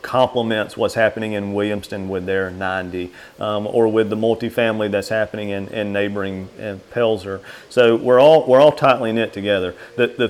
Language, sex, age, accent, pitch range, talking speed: English, male, 40-59, American, 105-115 Hz, 170 wpm